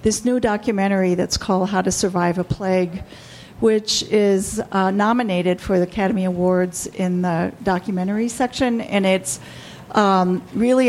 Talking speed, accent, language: 145 wpm, American, English